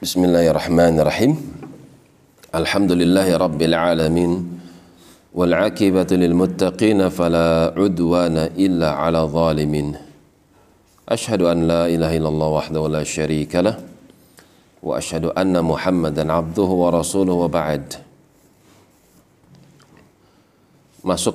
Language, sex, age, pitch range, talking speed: Indonesian, male, 40-59, 80-90 Hz, 80 wpm